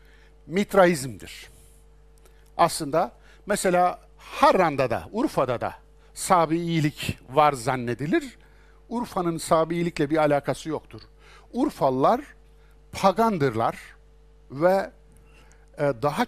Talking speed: 75 wpm